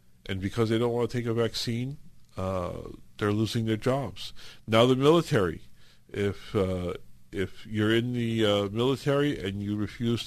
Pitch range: 105-130 Hz